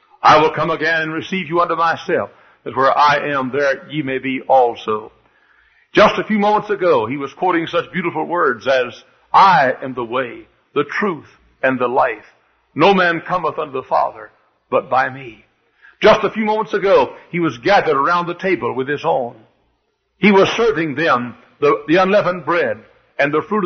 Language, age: English, 60-79